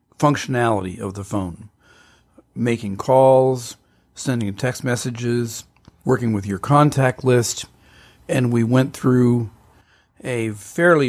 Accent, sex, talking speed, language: American, male, 110 wpm, English